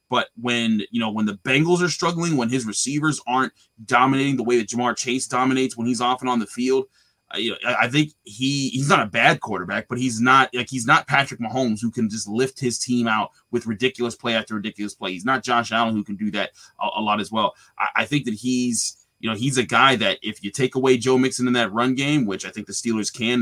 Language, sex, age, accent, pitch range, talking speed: English, male, 20-39, American, 115-140 Hz, 255 wpm